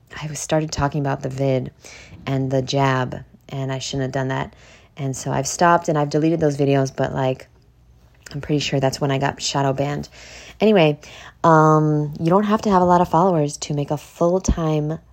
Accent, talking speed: American, 200 wpm